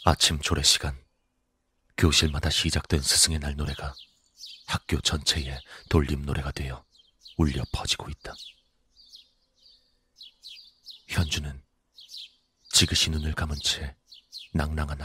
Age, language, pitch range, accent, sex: 40-59, Korean, 70-80 Hz, native, male